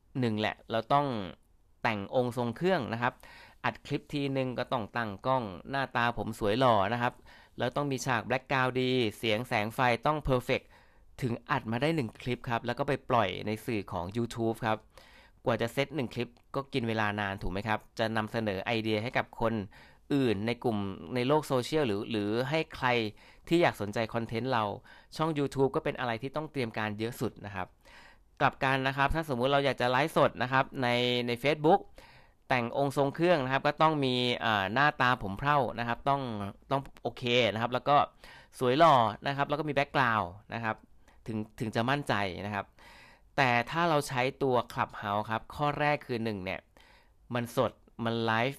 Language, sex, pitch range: Thai, male, 110-135 Hz